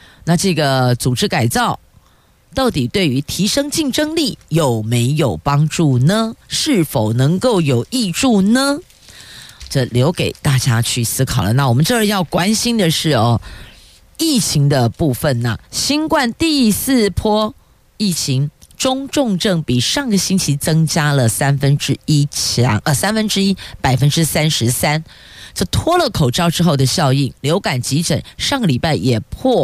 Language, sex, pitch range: Chinese, female, 135-205 Hz